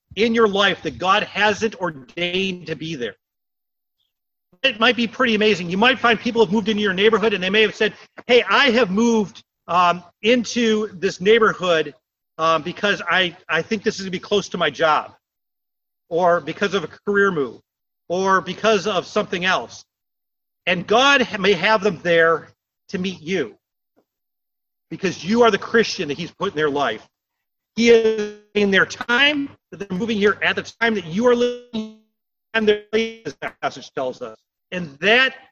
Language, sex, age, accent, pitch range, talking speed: English, male, 40-59, American, 185-240 Hz, 180 wpm